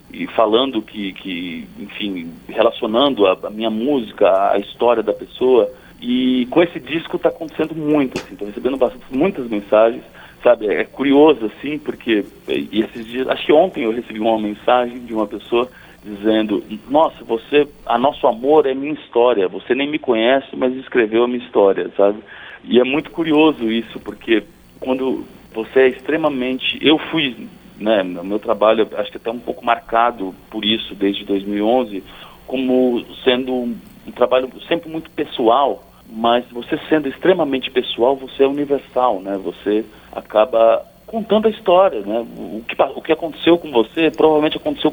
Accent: Brazilian